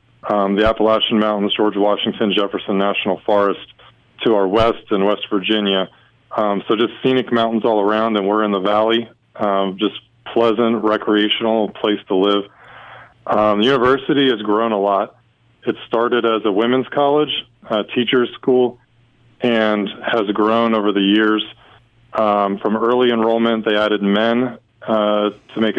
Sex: male